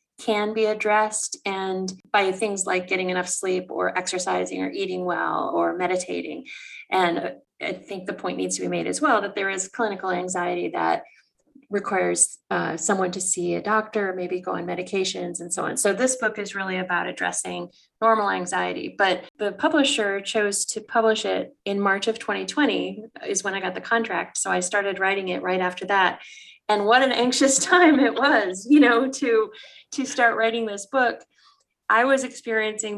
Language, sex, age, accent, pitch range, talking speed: English, female, 30-49, American, 190-230 Hz, 180 wpm